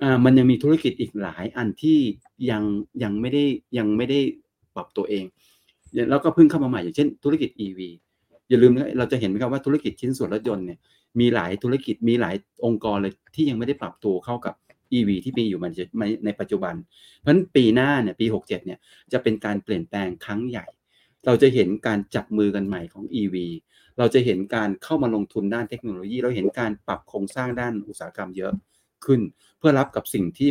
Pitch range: 100-125 Hz